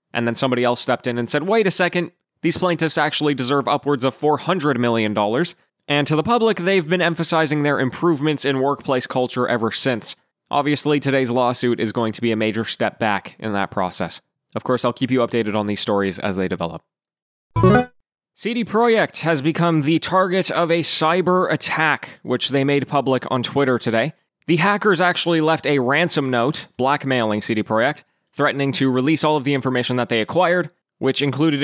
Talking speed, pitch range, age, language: 185 wpm, 125-165 Hz, 20-39, English